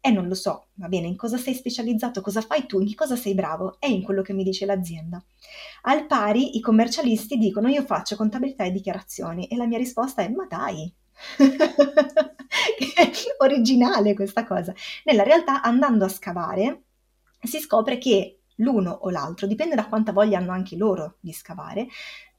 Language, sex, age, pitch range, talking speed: Italian, female, 20-39, 195-250 Hz, 180 wpm